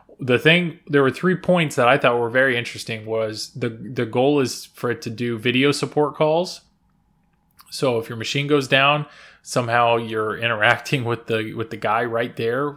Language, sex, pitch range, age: English, male, 115-140 Hz, 20-39